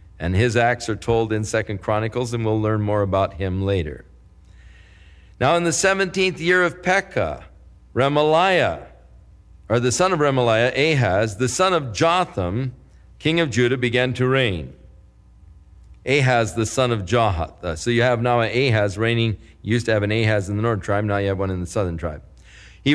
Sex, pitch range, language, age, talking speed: male, 100-150 Hz, English, 50-69, 180 wpm